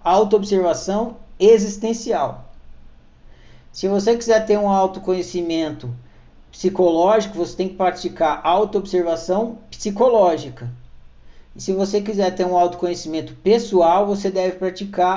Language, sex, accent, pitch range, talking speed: Portuguese, male, Brazilian, 160-215 Hz, 100 wpm